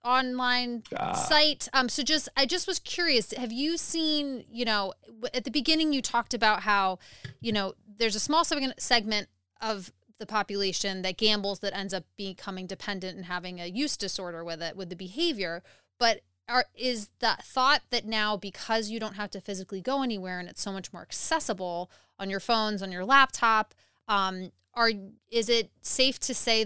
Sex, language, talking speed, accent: female, English, 180 wpm, American